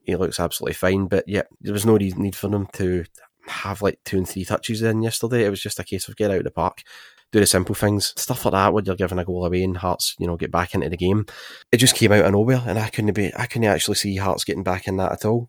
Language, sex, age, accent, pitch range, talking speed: English, male, 20-39, British, 90-105 Hz, 290 wpm